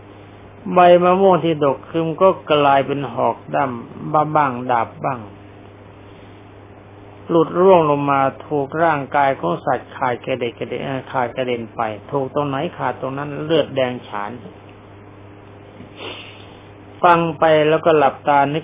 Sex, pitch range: male, 100-155 Hz